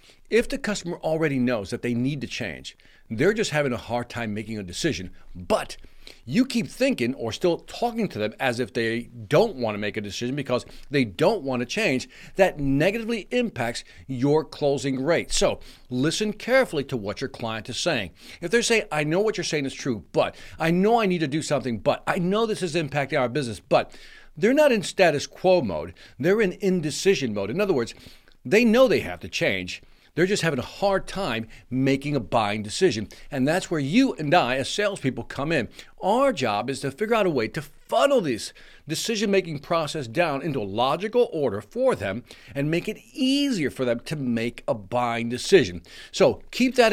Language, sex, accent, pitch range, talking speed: English, male, American, 120-195 Hz, 200 wpm